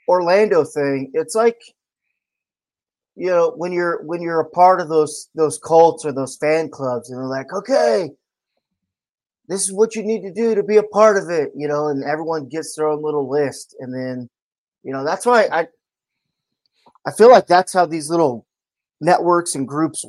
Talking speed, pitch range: 190 wpm, 130-165 Hz